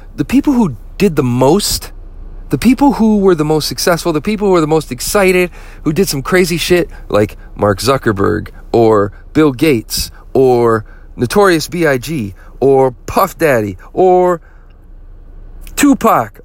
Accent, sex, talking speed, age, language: American, male, 140 wpm, 40-59, English